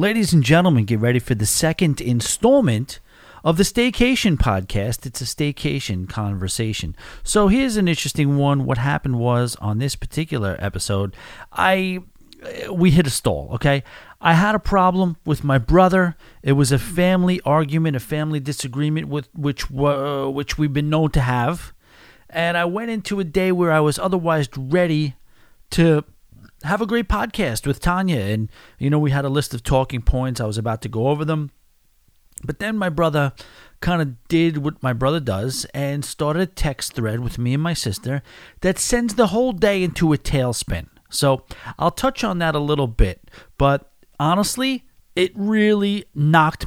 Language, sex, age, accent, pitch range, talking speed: English, male, 40-59, American, 125-180 Hz, 175 wpm